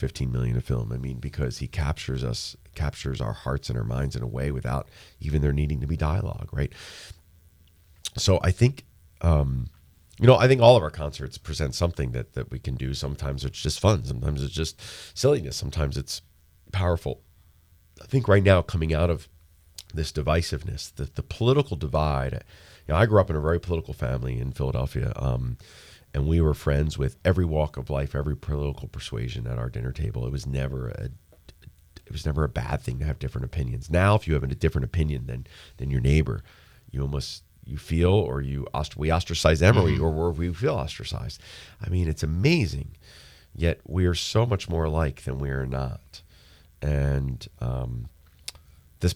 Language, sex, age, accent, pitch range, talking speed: English, male, 40-59, American, 70-85 Hz, 190 wpm